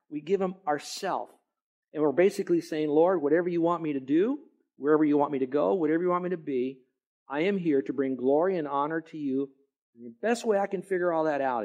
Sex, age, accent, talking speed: male, 50-69, American, 240 wpm